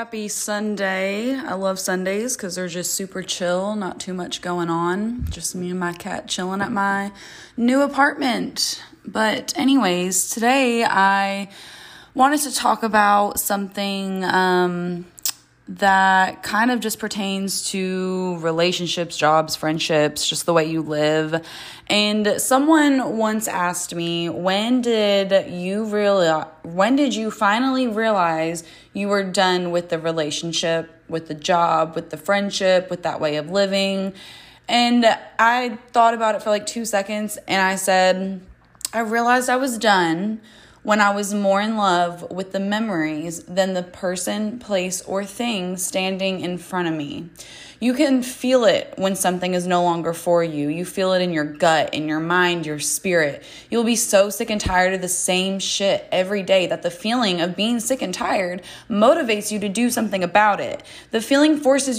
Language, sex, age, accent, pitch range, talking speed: English, female, 20-39, American, 175-215 Hz, 165 wpm